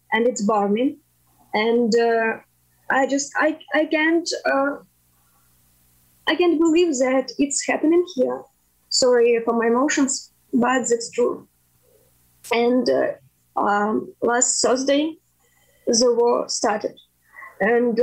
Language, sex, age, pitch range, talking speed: English, female, 20-39, 240-310 Hz, 115 wpm